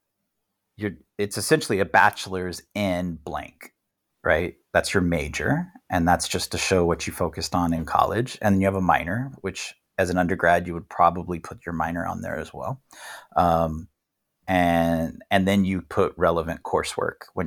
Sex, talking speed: male, 175 wpm